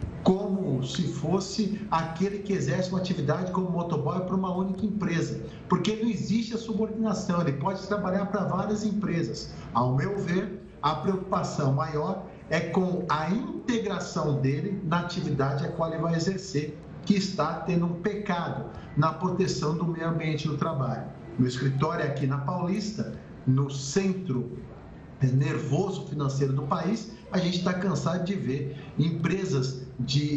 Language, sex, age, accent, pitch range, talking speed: Portuguese, male, 50-69, Brazilian, 150-200 Hz, 145 wpm